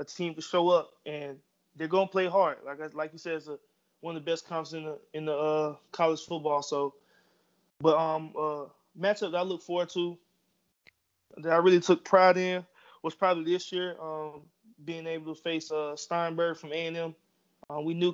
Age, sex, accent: 20-39, male, American